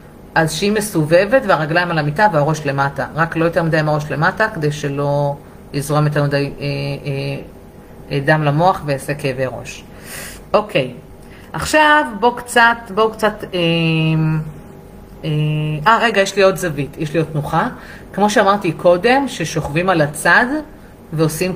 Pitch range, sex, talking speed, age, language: 150-195 Hz, female, 150 wpm, 30-49, Hebrew